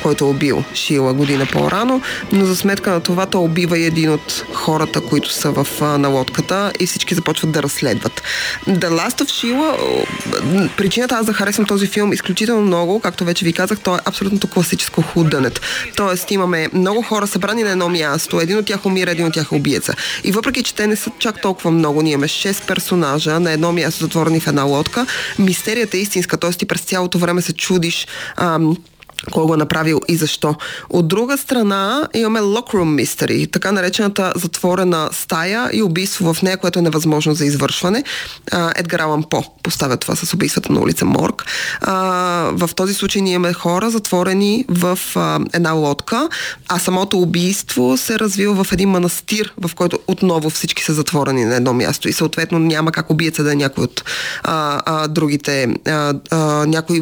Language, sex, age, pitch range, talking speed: Bulgarian, female, 20-39, 160-195 Hz, 175 wpm